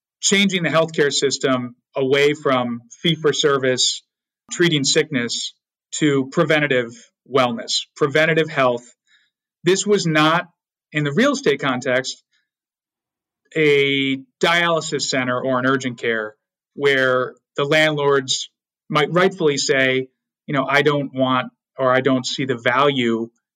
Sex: male